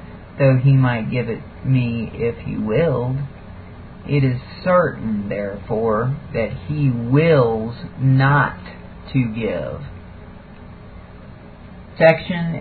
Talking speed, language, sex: 95 wpm, English, male